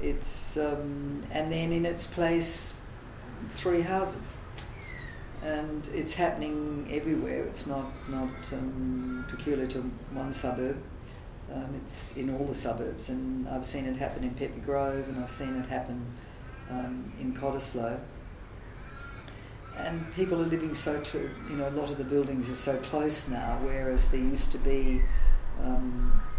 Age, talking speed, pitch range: 50-69, 150 wpm, 115-145 Hz